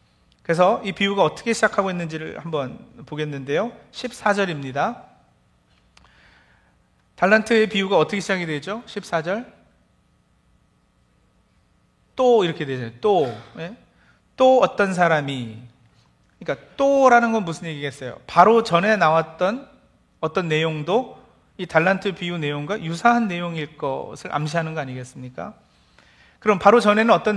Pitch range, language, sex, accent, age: 145-215 Hz, Korean, male, native, 40-59